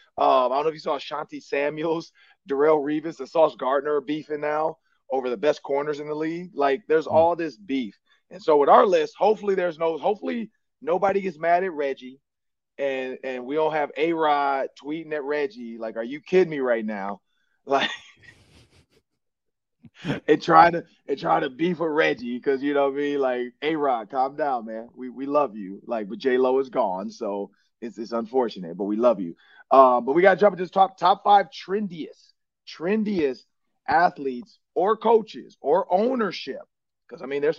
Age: 30-49